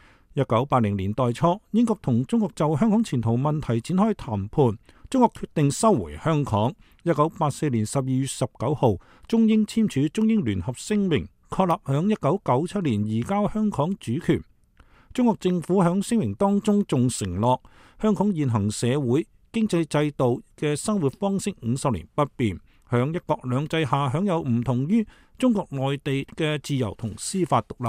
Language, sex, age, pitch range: English, male, 50-69, 125-195 Hz